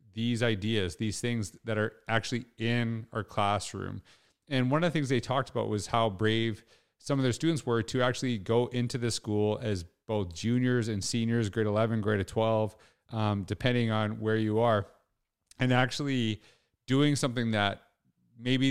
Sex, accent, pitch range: male, American, 105-125 Hz